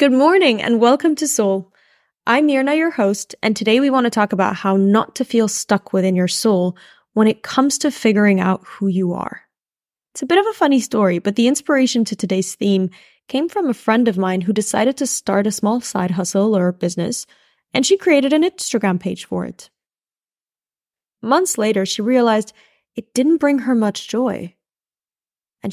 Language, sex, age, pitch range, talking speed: English, female, 10-29, 195-255 Hz, 190 wpm